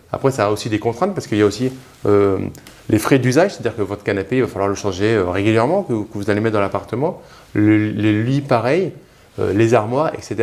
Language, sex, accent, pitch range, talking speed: French, male, French, 105-150 Hz, 235 wpm